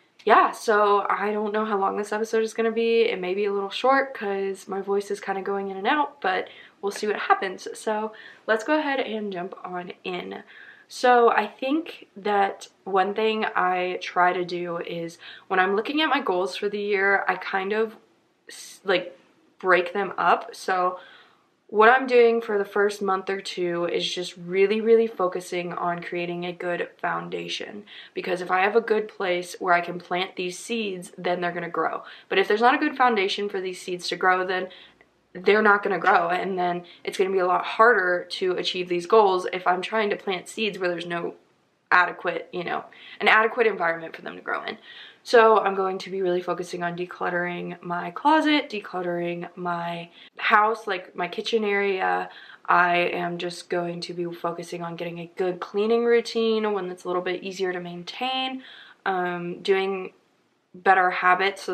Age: 20-39